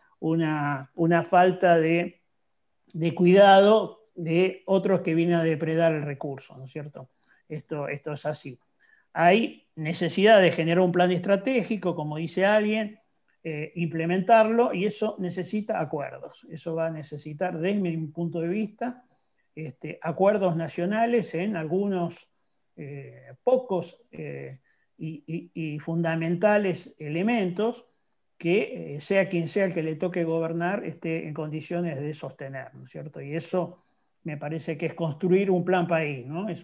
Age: 40-59